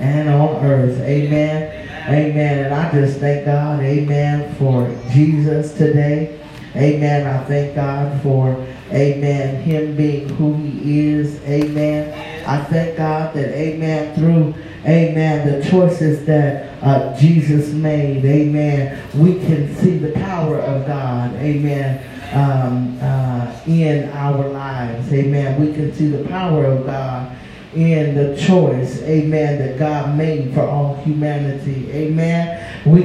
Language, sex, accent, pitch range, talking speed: English, male, American, 135-155 Hz, 135 wpm